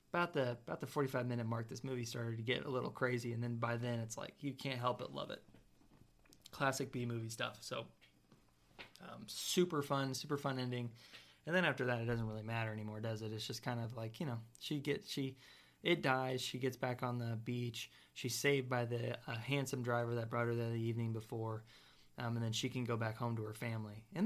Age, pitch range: 20-39, 115-130 Hz